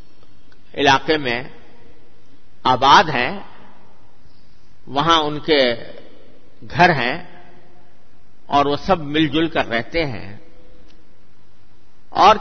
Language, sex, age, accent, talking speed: English, male, 50-69, Indian, 75 wpm